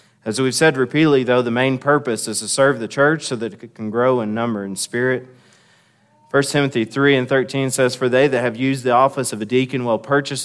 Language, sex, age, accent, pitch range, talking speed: English, male, 30-49, American, 110-130 Hz, 230 wpm